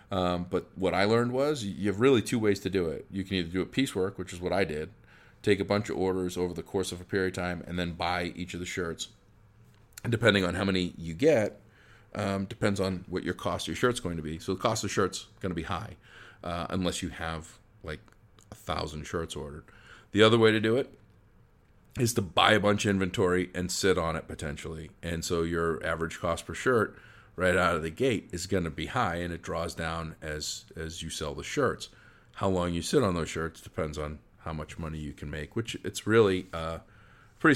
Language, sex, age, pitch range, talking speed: English, male, 40-59, 85-105 Hz, 235 wpm